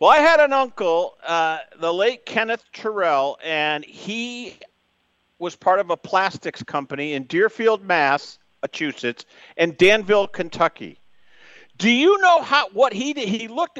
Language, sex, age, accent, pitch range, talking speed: English, male, 50-69, American, 180-245 Hz, 145 wpm